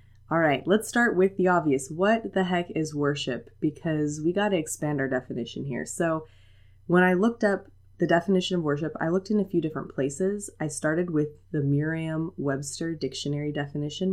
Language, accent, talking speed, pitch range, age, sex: English, American, 185 wpm, 130-175 Hz, 20-39, female